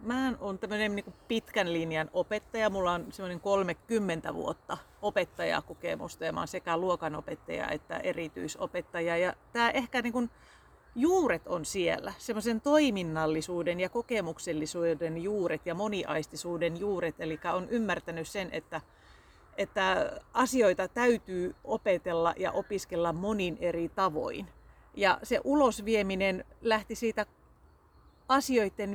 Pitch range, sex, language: 175-220 Hz, female, Finnish